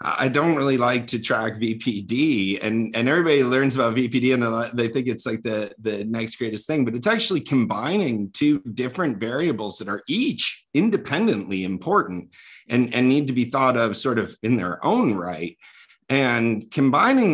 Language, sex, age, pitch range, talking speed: English, male, 50-69, 110-140 Hz, 175 wpm